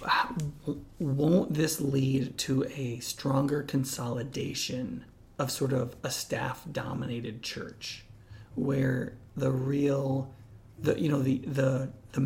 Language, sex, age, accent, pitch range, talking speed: English, male, 30-49, American, 130-150 Hz, 115 wpm